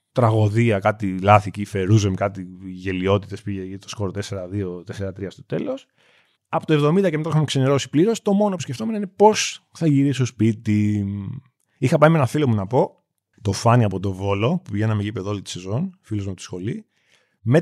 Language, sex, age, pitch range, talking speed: Greek, male, 30-49, 105-150 Hz, 200 wpm